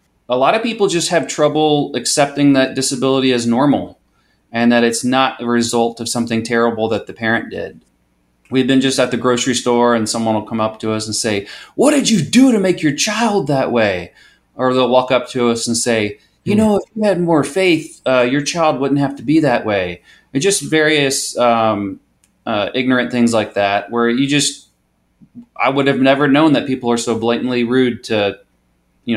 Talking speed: 205 wpm